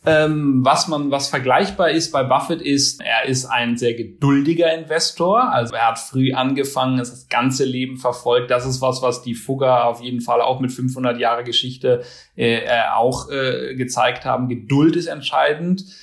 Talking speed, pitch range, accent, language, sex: 170 wpm, 120-140 Hz, German, German, male